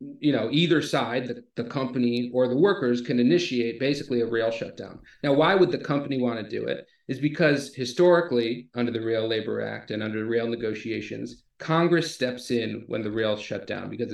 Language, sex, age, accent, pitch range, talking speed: English, male, 40-59, American, 115-140 Hz, 200 wpm